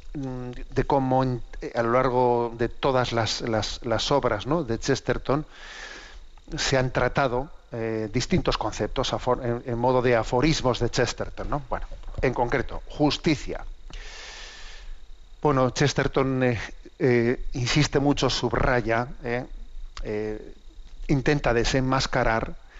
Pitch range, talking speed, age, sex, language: 115-135 Hz, 115 wpm, 50-69, male, Spanish